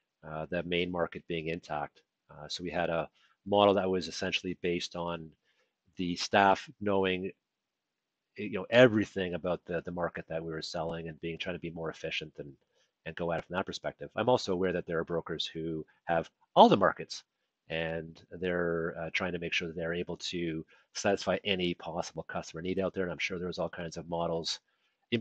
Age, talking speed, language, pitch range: 40-59, 200 wpm, English, 85-100 Hz